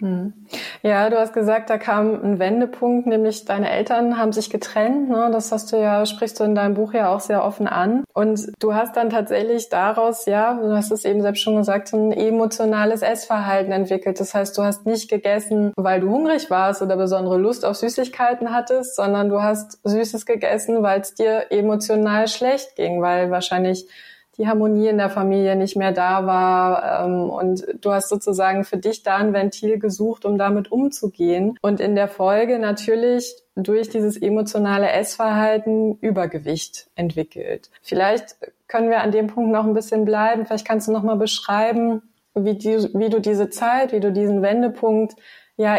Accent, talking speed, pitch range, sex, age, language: German, 180 wpm, 200-225 Hz, female, 20-39, German